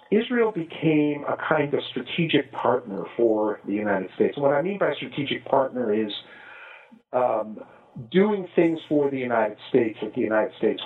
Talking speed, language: 160 wpm, English